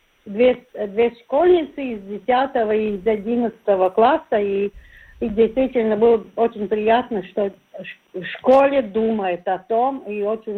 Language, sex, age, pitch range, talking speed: Russian, female, 50-69, 205-240 Hz, 130 wpm